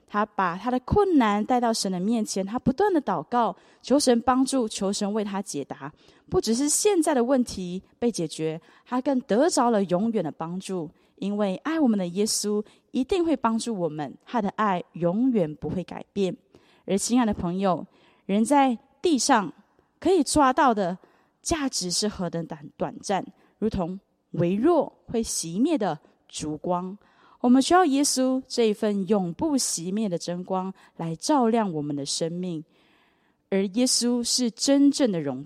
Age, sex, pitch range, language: 20-39, female, 185-255 Hz, Chinese